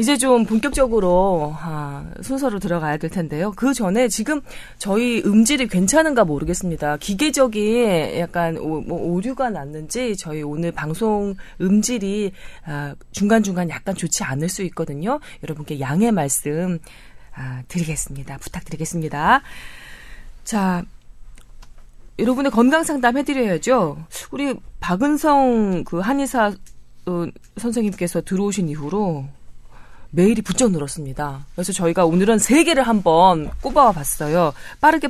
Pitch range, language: 160-240 Hz, Korean